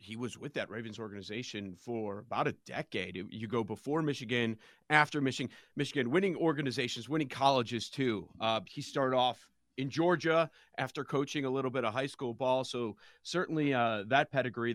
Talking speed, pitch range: 170 wpm, 120-160 Hz